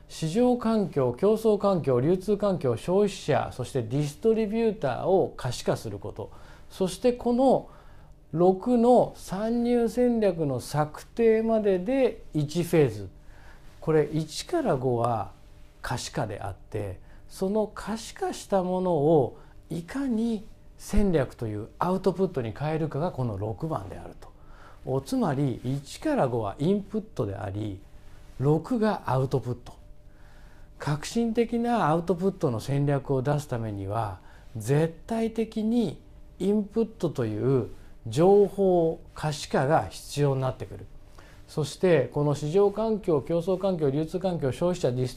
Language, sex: Japanese, male